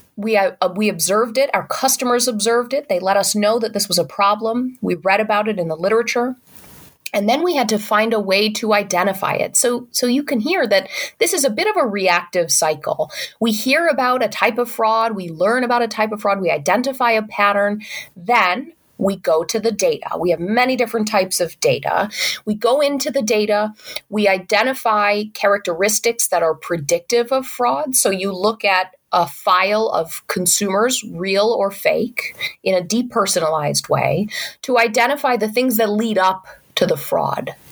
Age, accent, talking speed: 30-49, American, 190 wpm